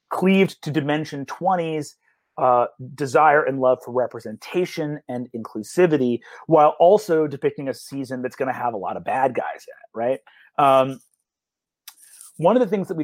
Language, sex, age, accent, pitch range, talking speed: English, male, 30-49, American, 135-175 Hz, 165 wpm